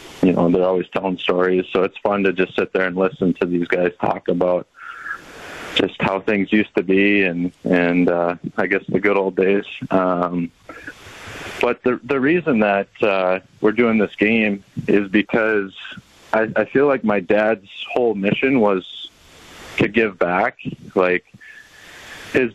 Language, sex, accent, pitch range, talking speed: English, male, American, 95-110 Hz, 165 wpm